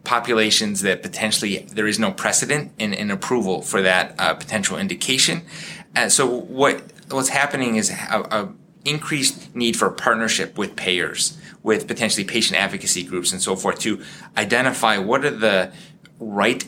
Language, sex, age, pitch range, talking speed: English, male, 20-39, 95-140 Hz, 155 wpm